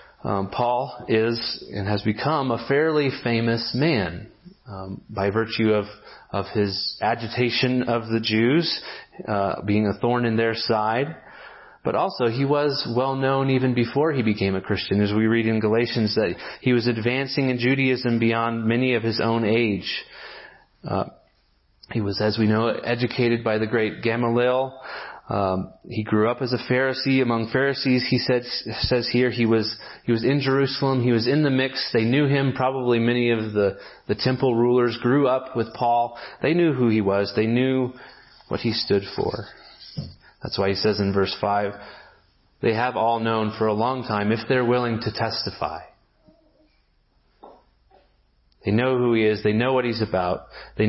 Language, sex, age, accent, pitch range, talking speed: English, male, 30-49, American, 110-125 Hz, 170 wpm